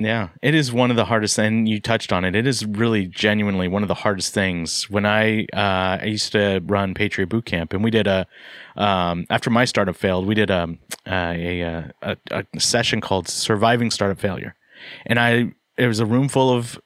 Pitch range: 100-120 Hz